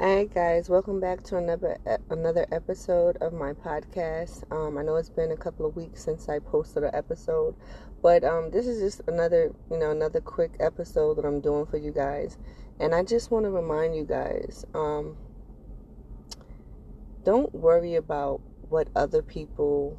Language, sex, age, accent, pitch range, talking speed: English, female, 20-39, American, 145-170 Hz, 175 wpm